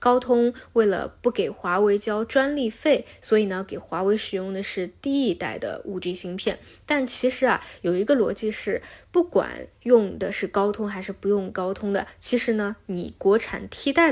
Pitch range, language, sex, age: 195-235 Hz, Chinese, female, 20-39